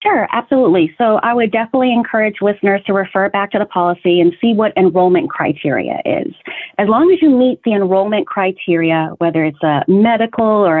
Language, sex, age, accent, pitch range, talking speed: English, female, 30-49, American, 170-230 Hz, 185 wpm